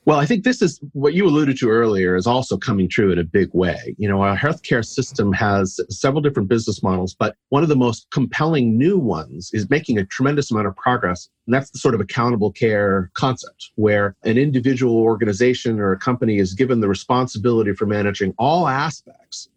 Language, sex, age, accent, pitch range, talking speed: English, male, 40-59, American, 100-125 Hz, 200 wpm